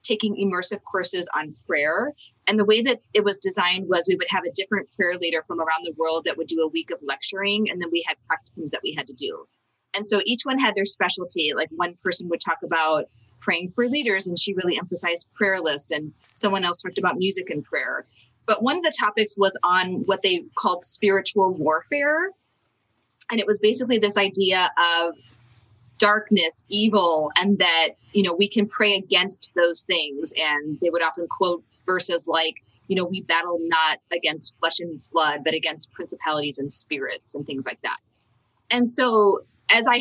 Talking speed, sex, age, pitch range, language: 195 wpm, female, 30-49, 165-215 Hz, English